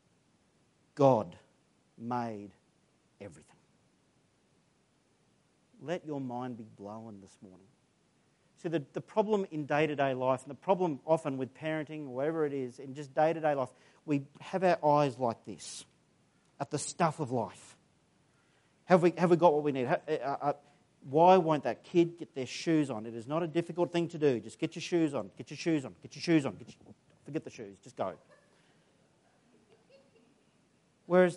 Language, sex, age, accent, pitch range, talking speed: English, male, 40-59, Australian, 130-170 Hz, 160 wpm